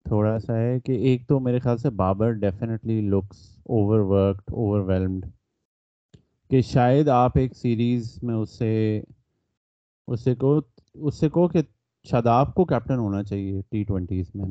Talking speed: 150 wpm